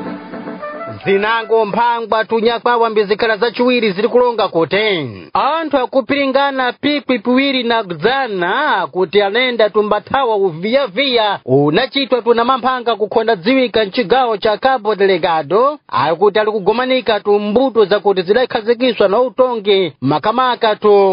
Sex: male